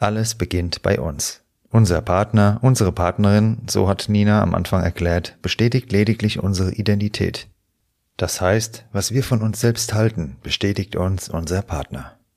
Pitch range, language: 85-105 Hz, German